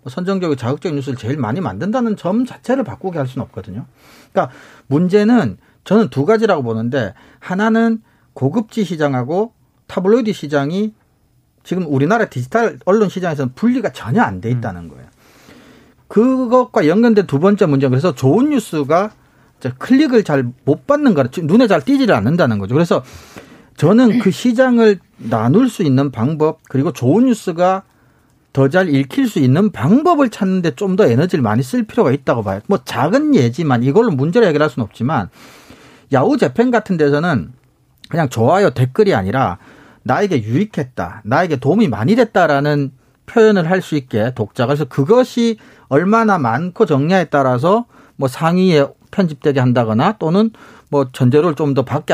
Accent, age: native, 40-59